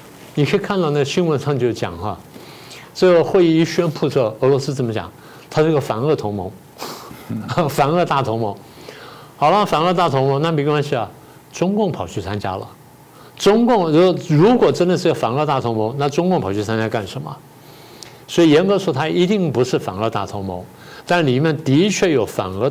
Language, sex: Chinese, male